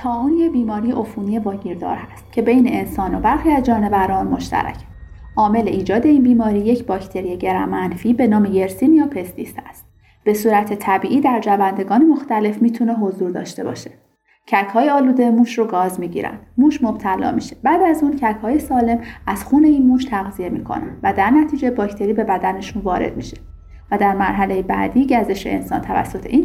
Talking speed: 165 wpm